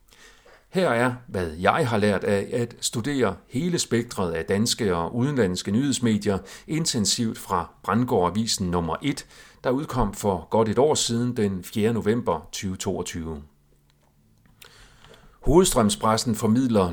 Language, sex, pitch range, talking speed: Danish, male, 95-125 Hz, 125 wpm